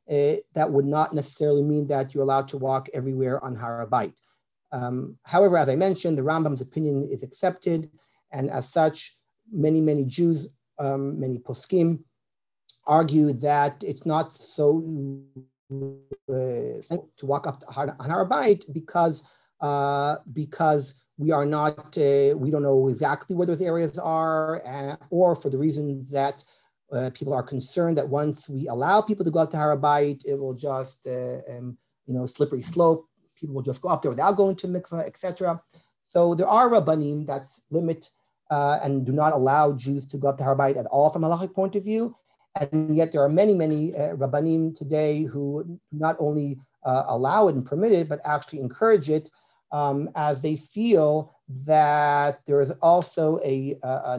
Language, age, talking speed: English, 40-59, 175 wpm